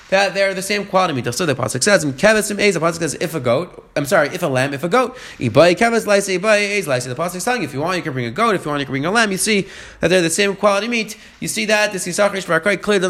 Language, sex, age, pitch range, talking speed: English, male, 30-49, 165-205 Hz, 295 wpm